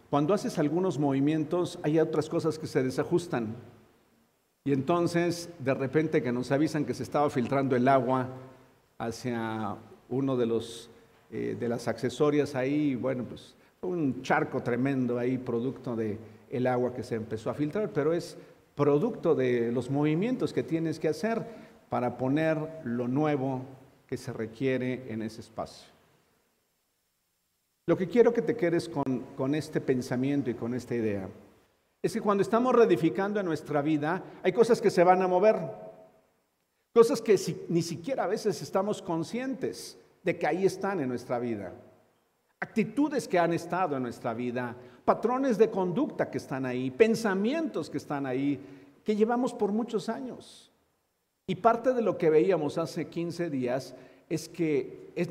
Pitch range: 125-180 Hz